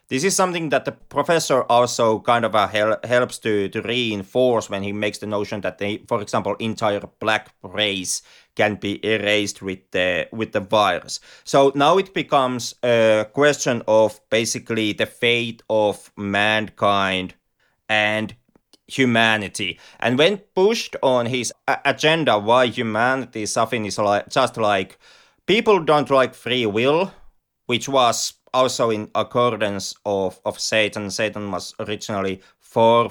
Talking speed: 145 wpm